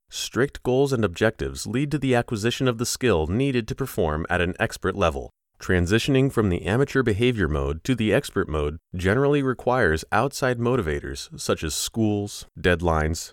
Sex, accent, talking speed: male, American, 160 wpm